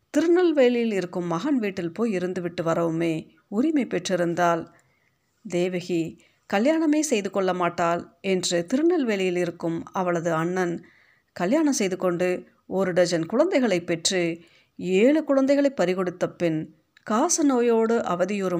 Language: Tamil